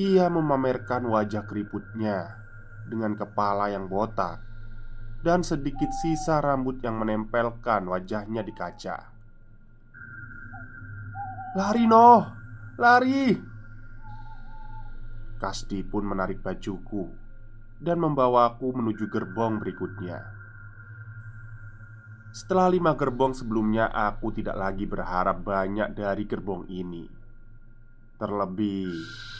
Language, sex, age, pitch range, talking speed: Indonesian, male, 20-39, 105-120 Hz, 85 wpm